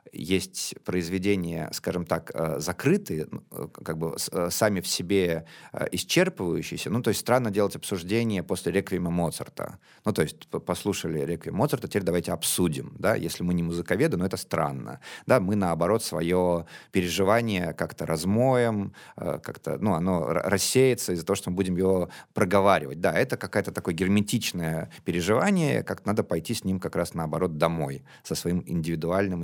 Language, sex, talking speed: Russian, male, 150 wpm